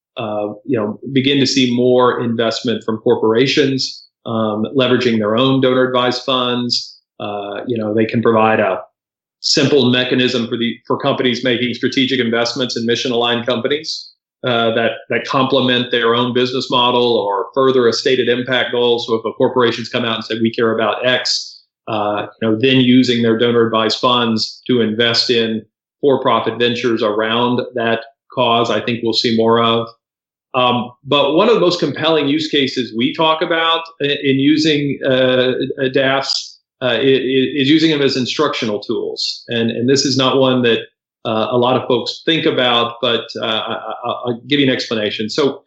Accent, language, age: American, English, 40-59